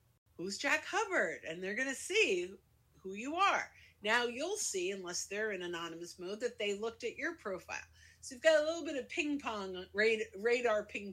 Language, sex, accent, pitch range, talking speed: English, female, American, 195-265 Hz, 190 wpm